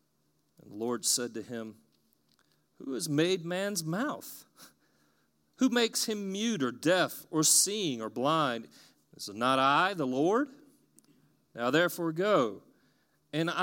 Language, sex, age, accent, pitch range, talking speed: English, male, 40-59, American, 120-180 Hz, 130 wpm